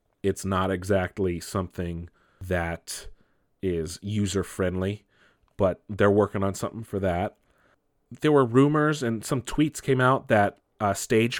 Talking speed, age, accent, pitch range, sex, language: 135 wpm, 30-49, American, 100-130 Hz, male, English